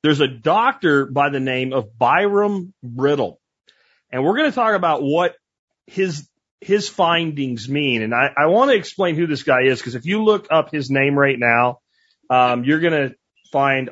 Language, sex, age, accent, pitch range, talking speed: English, male, 30-49, American, 130-175 Hz, 190 wpm